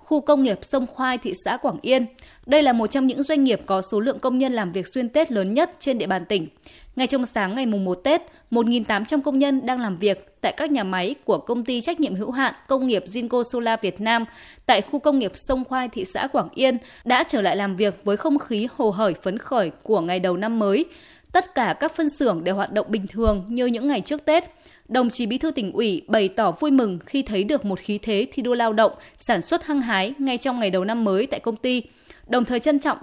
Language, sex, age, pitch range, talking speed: Vietnamese, female, 20-39, 210-280 Hz, 255 wpm